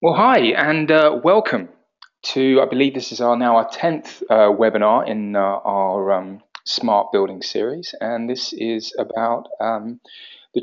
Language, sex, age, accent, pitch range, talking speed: English, male, 20-39, British, 105-135 Hz, 165 wpm